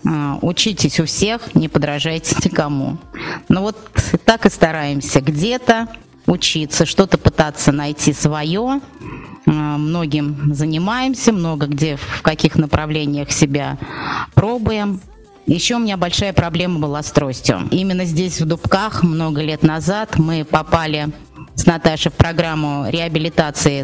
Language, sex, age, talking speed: Russian, female, 30-49, 120 wpm